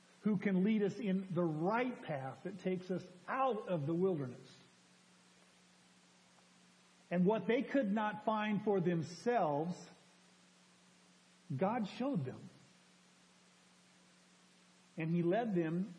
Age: 50-69